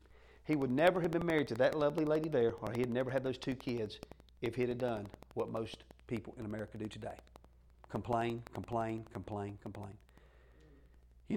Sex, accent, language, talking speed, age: male, American, English, 185 wpm, 40-59